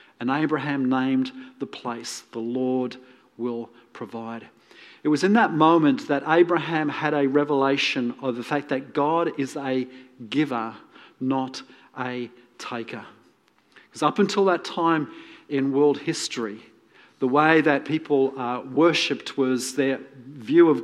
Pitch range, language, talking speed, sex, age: 130-155 Hz, English, 140 wpm, male, 40-59